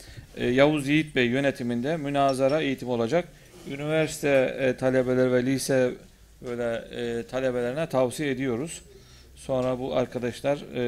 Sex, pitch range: male, 115-140 Hz